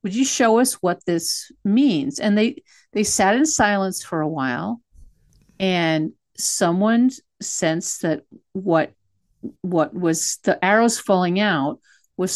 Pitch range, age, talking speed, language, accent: 155-220 Hz, 50-69, 135 wpm, English, American